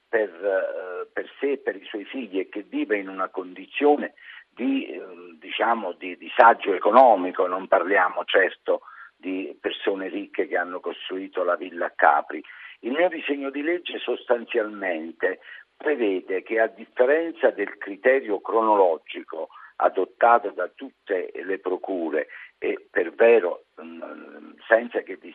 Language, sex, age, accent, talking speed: Italian, male, 50-69, native, 125 wpm